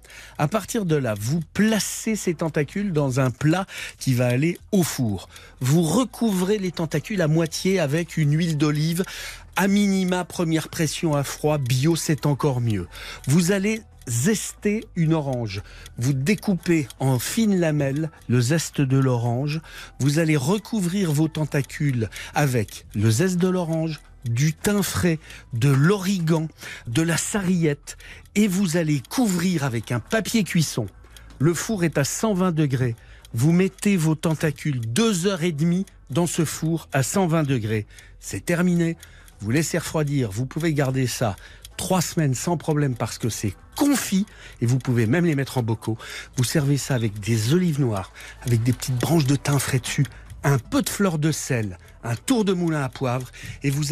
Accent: French